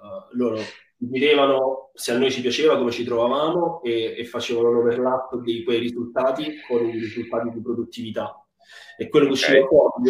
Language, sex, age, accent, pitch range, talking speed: Italian, male, 20-39, native, 110-130 Hz, 170 wpm